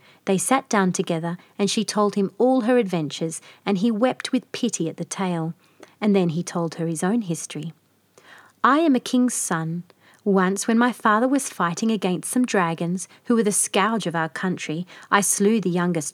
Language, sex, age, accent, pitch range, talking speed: English, female, 40-59, Australian, 175-230 Hz, 195 wpm